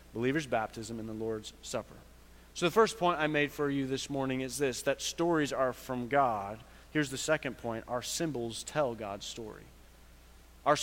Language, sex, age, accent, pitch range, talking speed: English, male, 30-49, American, 130-185 Hz, 185 wpm